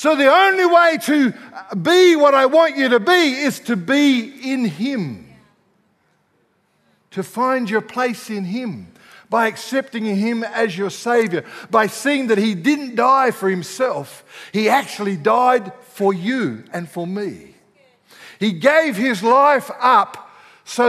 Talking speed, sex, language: 145 wpm, male, English